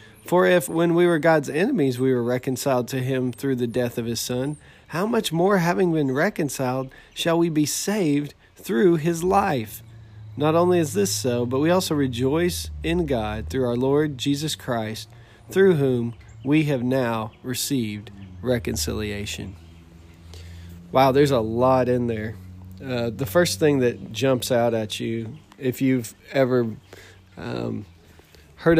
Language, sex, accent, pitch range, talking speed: English, male, American, 115-140 Hz, 155 wpm